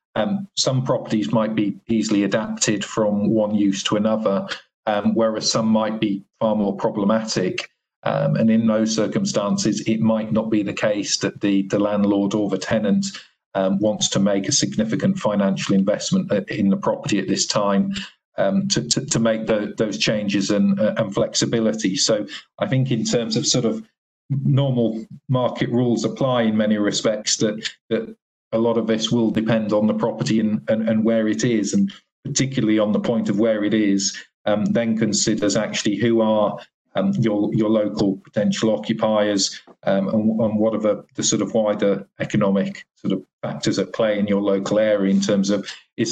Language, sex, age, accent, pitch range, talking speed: English, male, 40-59, British, 100-115 Hz, 180 wpm